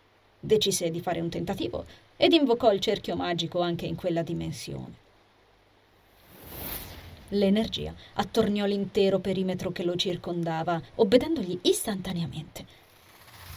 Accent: native